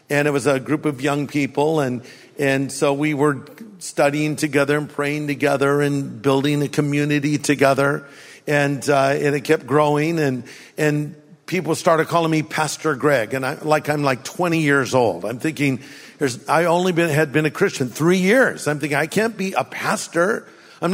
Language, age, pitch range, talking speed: English, 50-69, 145-200 Hz, 185 wpm